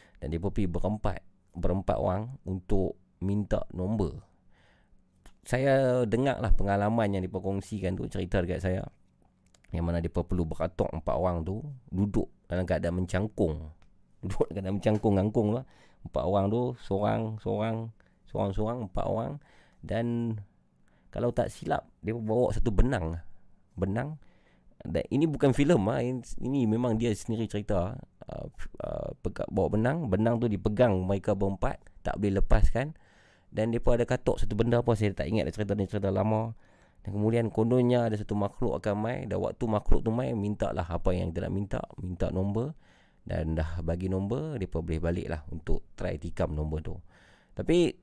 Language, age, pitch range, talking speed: Malay, 30-49, 90-115 Hz, 155 wpm